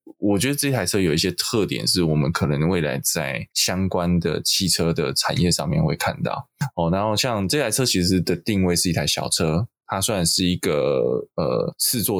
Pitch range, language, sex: 85-105 Hz, Chinese, male